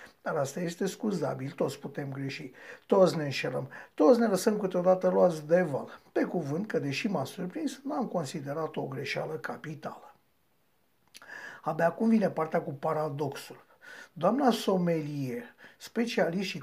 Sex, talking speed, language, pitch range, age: male, 140 wpm, Romanian, 155-235 Hz, 60-79